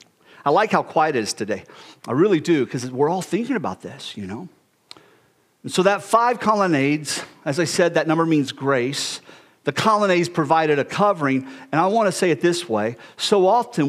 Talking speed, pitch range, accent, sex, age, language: 195 wpm, 160-220 Hz, American, male, 50-69, English